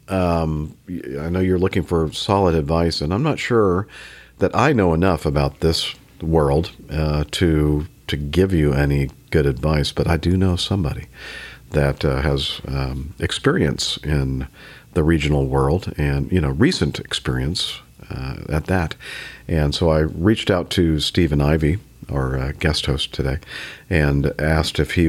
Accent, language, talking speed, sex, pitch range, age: American, English, 155 wpm, male, 75-95 Hz, 50-69